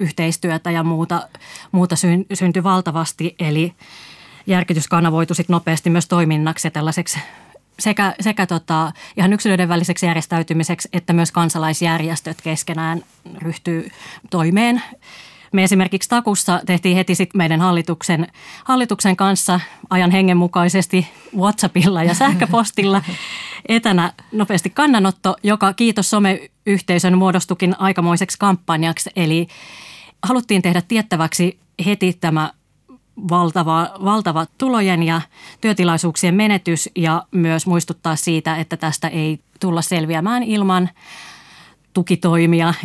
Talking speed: 105 wpm